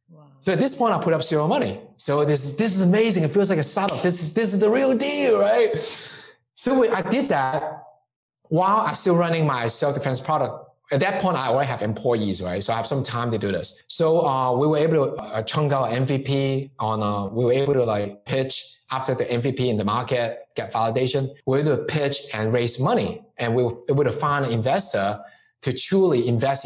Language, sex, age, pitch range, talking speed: English, male, 20-39, 120-175 Hz, 225 wpm